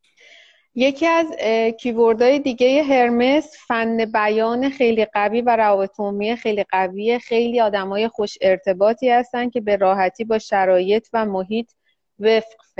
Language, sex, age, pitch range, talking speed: Persian, female, 30-49, 195-240 Hz, 125 wpm